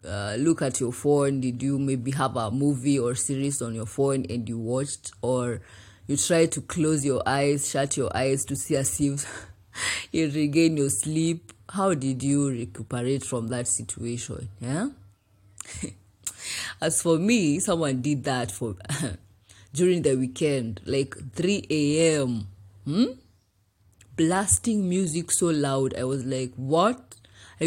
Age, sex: 20-39, female